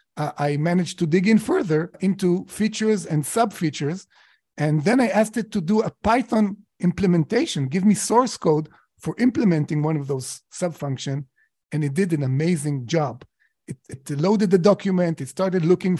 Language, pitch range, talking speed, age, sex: English, 145-190 Hz, 170 wpm, 40-59, male